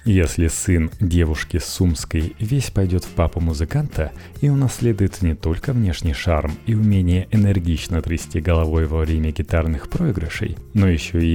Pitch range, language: 85-110 Hz, Russian